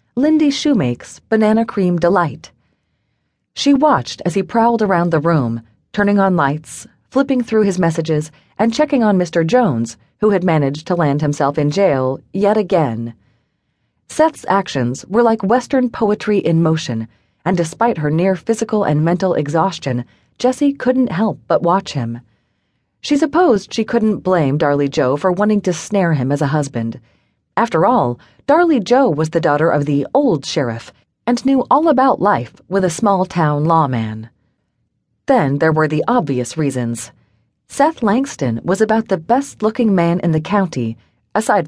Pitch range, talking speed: 140-220 Hz, 160 wpm